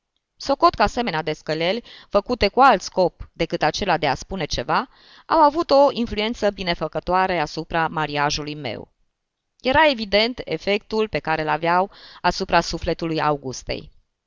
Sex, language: female, Romanian